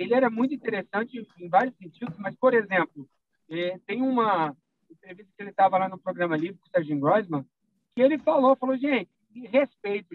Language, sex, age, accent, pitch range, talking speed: Portuguese, male, 50-69, Brazilian, 175-255 Hz, 185 wpm